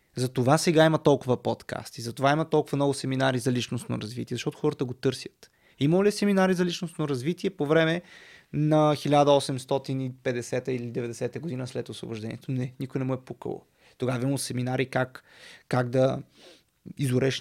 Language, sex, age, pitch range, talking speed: Bulgarian, male, 20-39, 125-155 Hz, 155 wpm